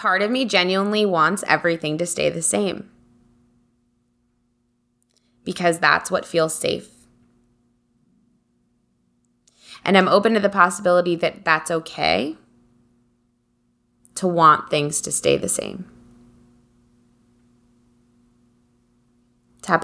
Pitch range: 120-170 Hz